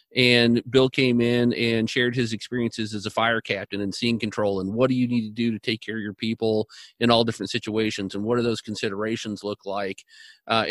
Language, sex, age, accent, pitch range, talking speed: English, male, 40-59, American, 110-125 Hz, 225 wpm